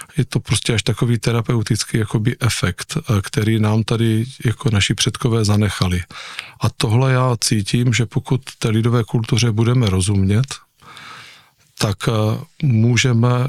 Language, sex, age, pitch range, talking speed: Czech, male, 50-69, 105-125 Hz, 120 wpm